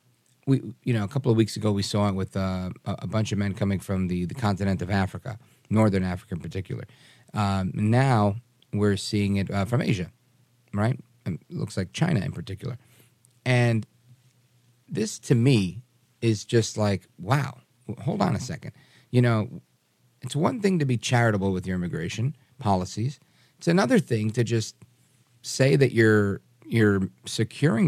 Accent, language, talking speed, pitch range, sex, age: American, English, 170 wpm, 100-130 Hz, male, 40-59